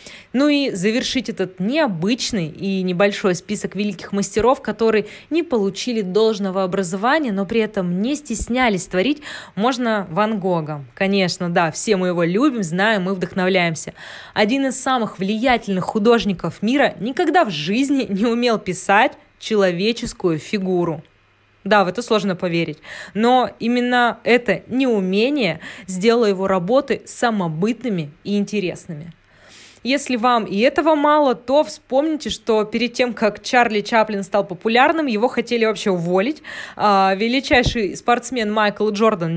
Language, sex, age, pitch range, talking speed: Russian, female, 20-39, 190-240 Hz, 130 wpm